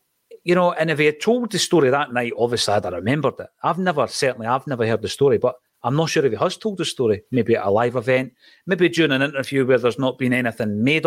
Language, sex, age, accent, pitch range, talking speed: English, male, 40-59, British, 120-160 Hz, 265 wpm